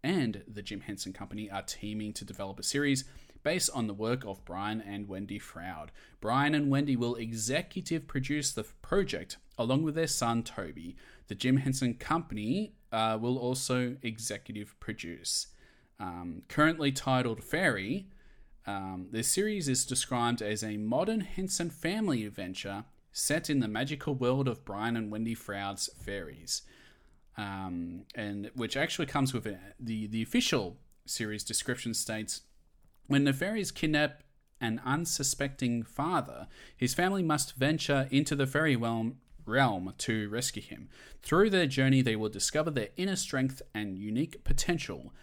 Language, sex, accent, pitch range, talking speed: English, male, Australian, 105-145 Hz, 145 wpm